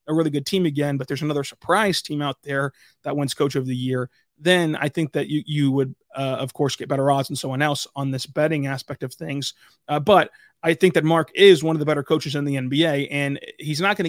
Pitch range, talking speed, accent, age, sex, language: 140-160 Hz, 250 wpm, American, 30-49, male, English